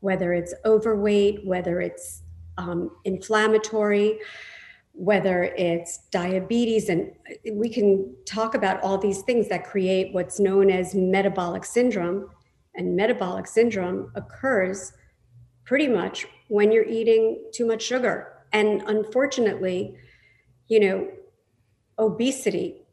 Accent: American